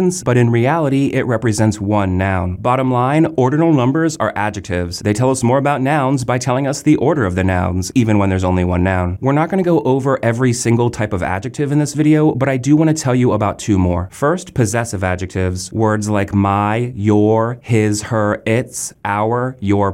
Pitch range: 105-145 Hz